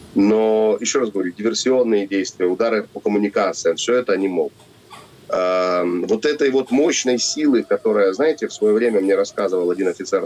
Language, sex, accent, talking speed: Russian, male, native, 160 wpm